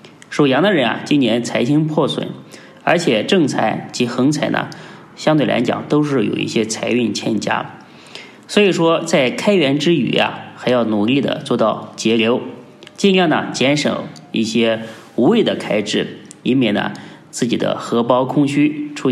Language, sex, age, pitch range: Chinese, male, 20-39, 110-145 Hz